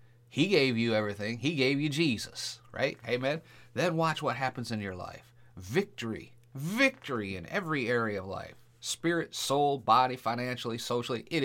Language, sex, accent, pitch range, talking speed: English, male, American, 110-145 Hz, 155 wpm